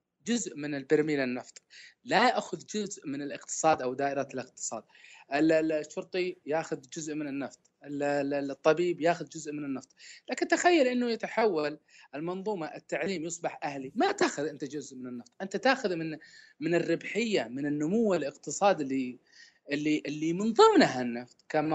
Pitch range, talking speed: 145-200 Hz, 140 wpm